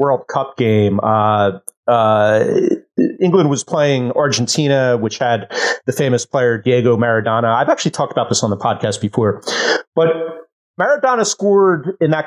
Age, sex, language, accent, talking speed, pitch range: 30-49, male, English, American, 145 wpm, 125-185 Hz